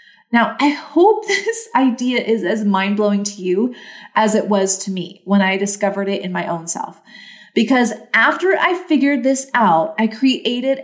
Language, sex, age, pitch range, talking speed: English, female, 30-49, 190-245 Hz, 175 wpm